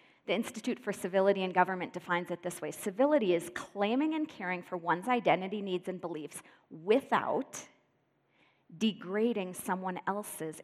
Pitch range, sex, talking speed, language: 170-220 Hz, female, 140 wpm, English